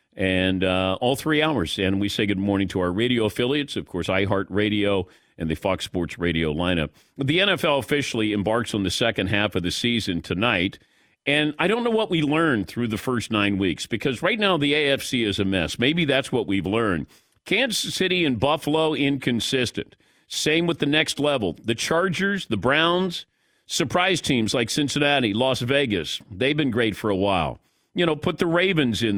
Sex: male